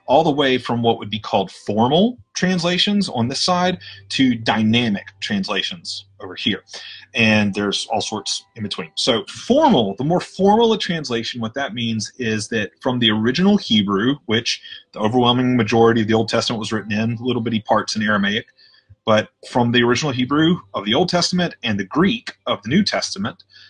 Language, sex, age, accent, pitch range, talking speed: English, male, 30-49, American, 110-150 Hz, 180 wpm